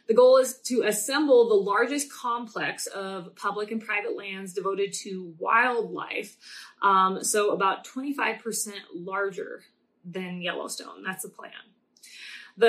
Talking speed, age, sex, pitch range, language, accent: 130 wpm, 20-39, female, 195-240 Hz, English, American